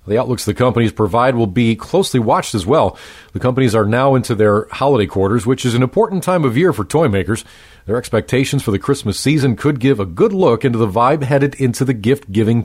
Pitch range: 110-145 Hz